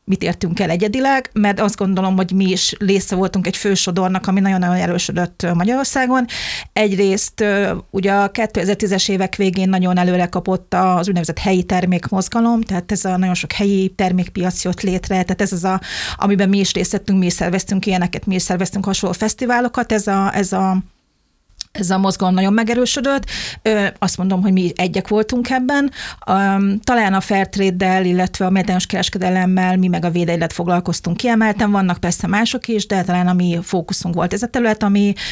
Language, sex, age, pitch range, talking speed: Hungarian, female, 30-49, 185-205 Hz, 175 wpm